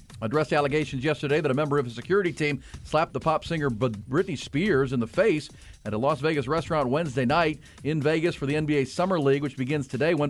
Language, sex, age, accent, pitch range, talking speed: English, male, 40-59, American, 135-160 Hz, 215 wpm